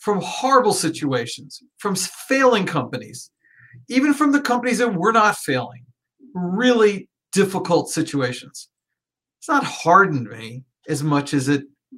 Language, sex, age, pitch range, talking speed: English, male, 40-59, 145-210 Hz, 125 wpm